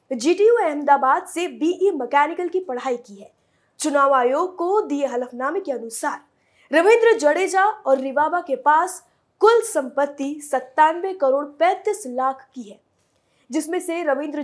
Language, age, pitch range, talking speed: Hindi, 20-39, 270-345 Hz, 135 wpm